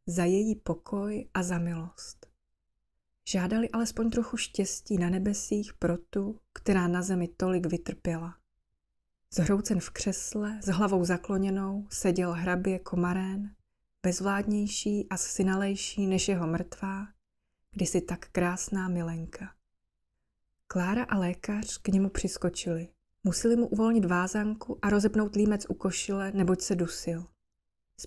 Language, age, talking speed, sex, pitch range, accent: Czech, 20-39, 120 wpm, female, 175-205 Hz, native